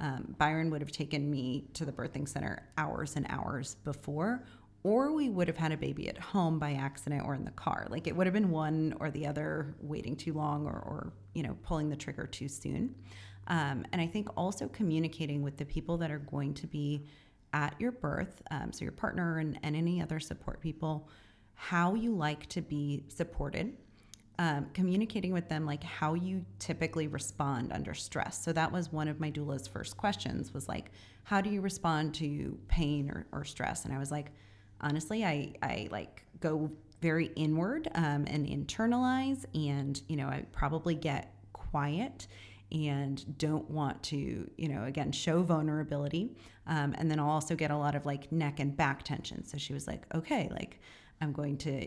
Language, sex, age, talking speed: English, female, 30-49, 195 wpm